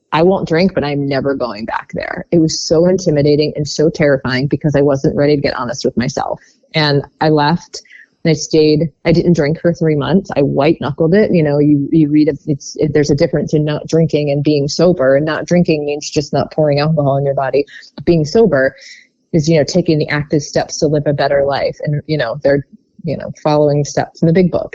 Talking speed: 225 wpm